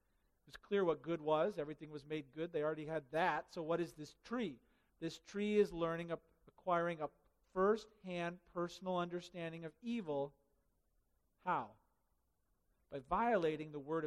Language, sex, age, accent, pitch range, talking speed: English, male, 50-69, American, 165-210 Hz, 155 wpm